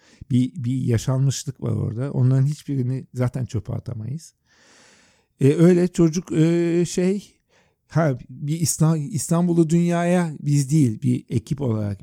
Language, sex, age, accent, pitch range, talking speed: Turkish, male, 50-69, native, 120-155 Hz, 115 wpm